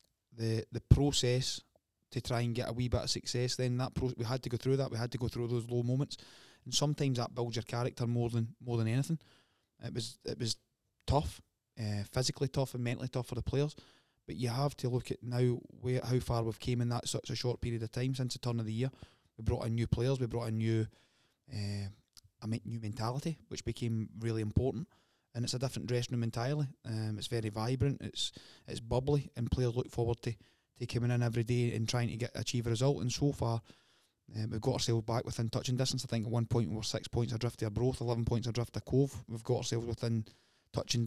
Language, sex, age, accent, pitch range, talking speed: English, male, 20-39, British, 115-125 Hz, 235 wpm